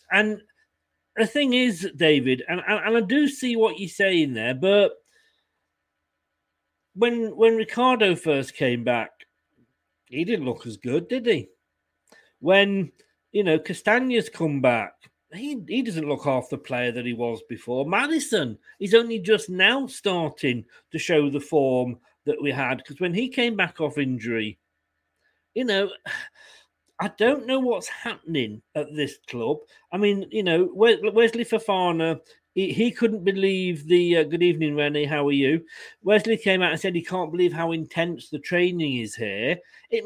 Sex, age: male, 40-59